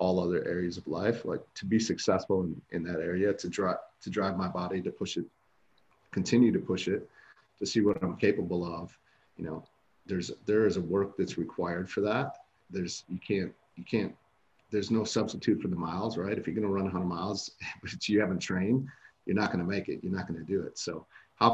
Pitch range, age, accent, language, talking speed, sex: 90-105 Hz, 40-59, American, English, 225 wpm, male